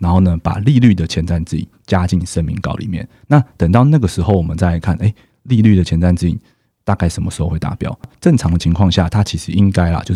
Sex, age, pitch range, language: male, 30-49, 85-105 Hz, Chinese